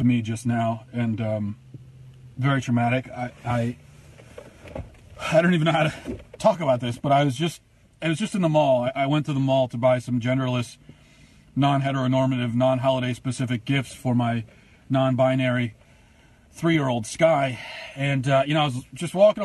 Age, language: 40-59, English